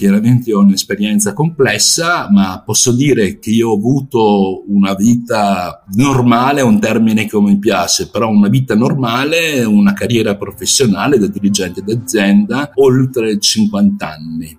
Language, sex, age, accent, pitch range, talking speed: Italian, male, 50-69, native, 100-120 Hz, 135 wpm